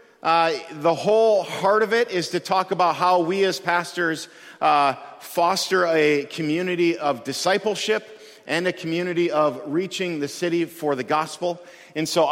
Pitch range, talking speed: 145-180 Hz, 155 wpm